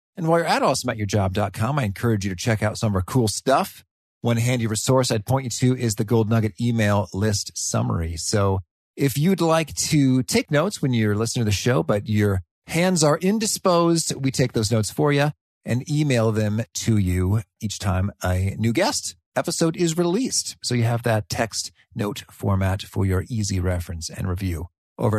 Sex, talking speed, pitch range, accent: male, 195 wpm, 100-135 Hz, American